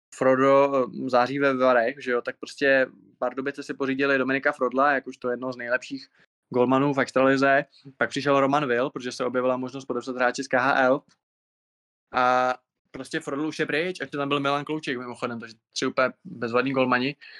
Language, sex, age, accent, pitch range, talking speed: Czech, male, 20-39, native, 125-145 Hz, 185 wpm